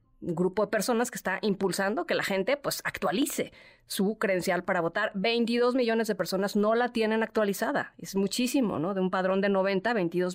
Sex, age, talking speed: female, 30-49, 185 wpm